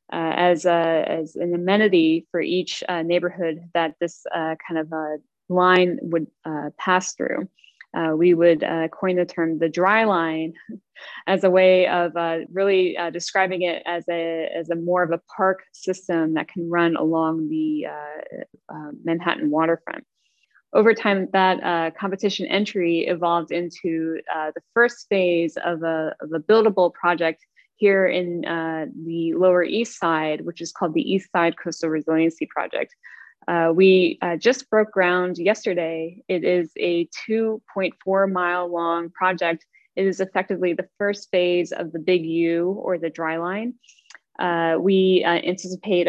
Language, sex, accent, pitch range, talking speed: English, female, American, 165-190 Hz, 155 wpm